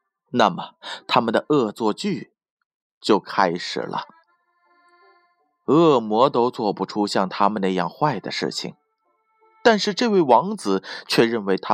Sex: male